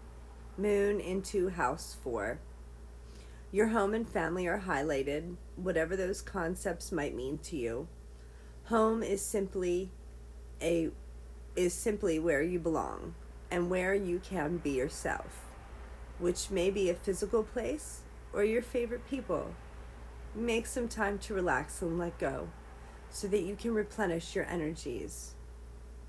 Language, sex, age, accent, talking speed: English, female, 40-59, American, 130 wpm